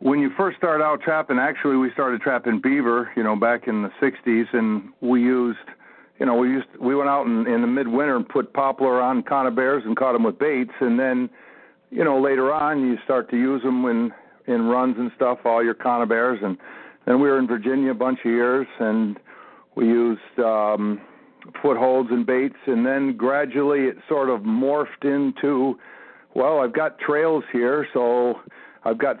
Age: 50-69